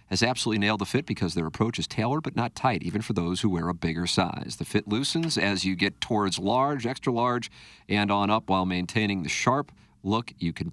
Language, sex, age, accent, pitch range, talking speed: English, male, 50-69, American, 100-145 Hz, 230 wpm